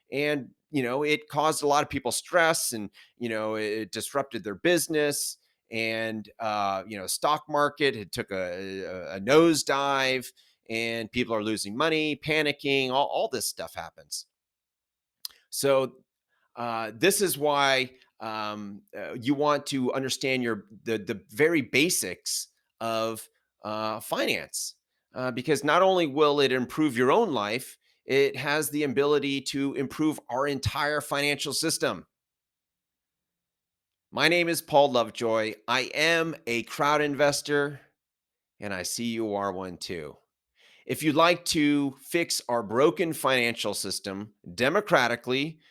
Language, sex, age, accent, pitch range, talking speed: English, male, 30-49, American, 110-145 Hz, 140 wpm